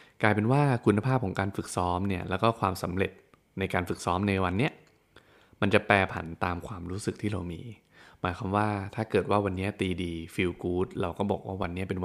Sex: male